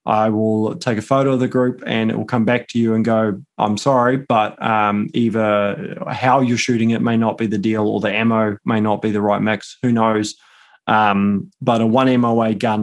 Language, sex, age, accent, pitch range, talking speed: English, male, 20-39, Australian, 110-125 Hz, 225 wpm